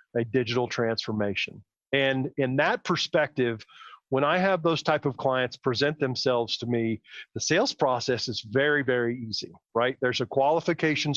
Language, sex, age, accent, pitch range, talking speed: English, male, 40-59, American, 125-160 Hz, 155 wpm